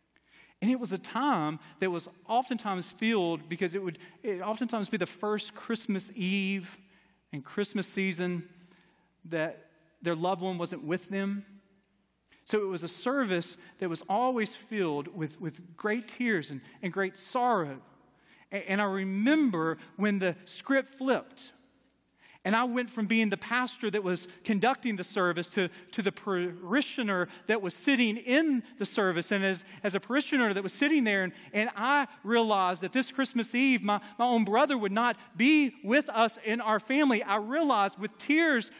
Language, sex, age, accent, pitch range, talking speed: English, male, 40-59, American, 180-250 Hz, 165 wpm